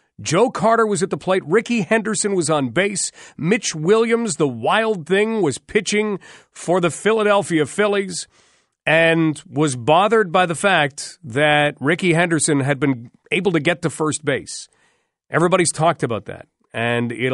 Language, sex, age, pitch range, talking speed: English, male, 40-59, 145-195 Hz, 155 wpm